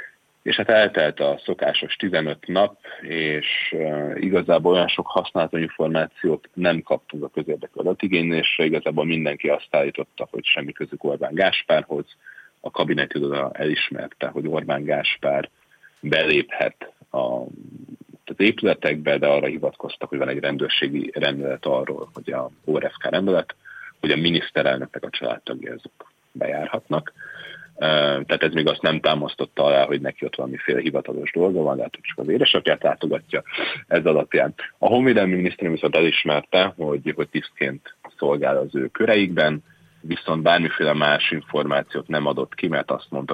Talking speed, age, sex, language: 140 wpm, 30-49, male, Hungarian